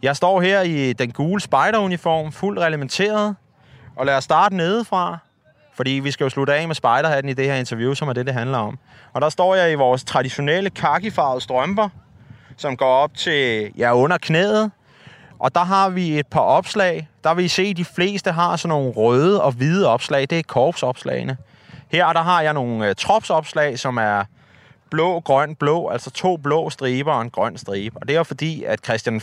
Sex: male